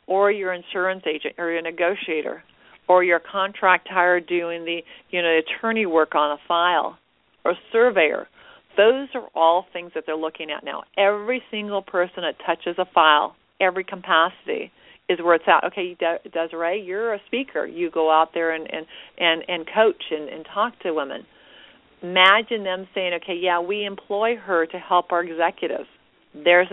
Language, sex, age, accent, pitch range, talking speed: English, female, 50-69, American, 160-190 Hz, 175 wpm